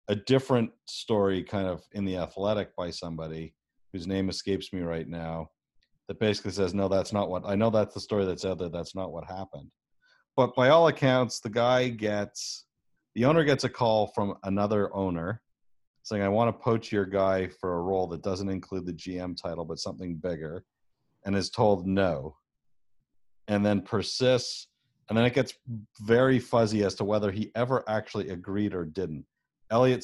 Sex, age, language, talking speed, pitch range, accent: male, 40-59, English, 185 wpm, 95-115 Hz, American